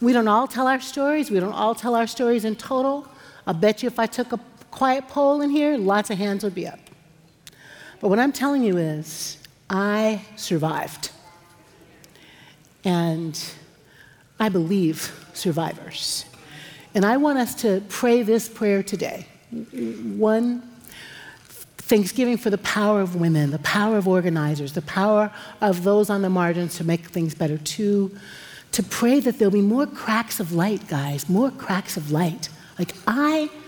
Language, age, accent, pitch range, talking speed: English, 60-79, American, 180-265 Hz, 160 wpm